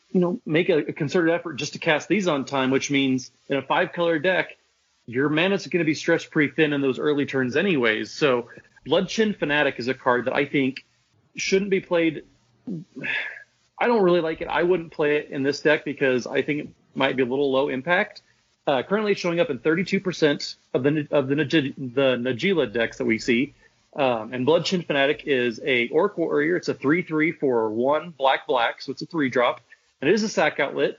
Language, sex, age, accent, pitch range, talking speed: English, male, 30-49, American, 130-165 Hz, 200 wpm